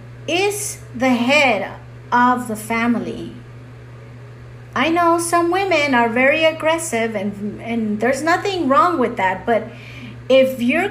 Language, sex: English, female